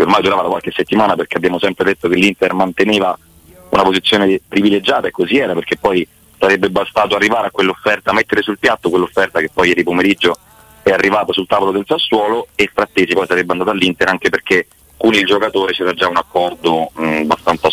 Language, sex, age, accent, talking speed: Italian, male, 30-49, native, 185 wpm